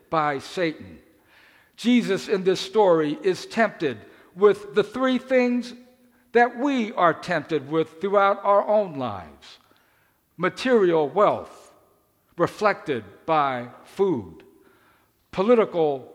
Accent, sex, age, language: American, male, 60-79, English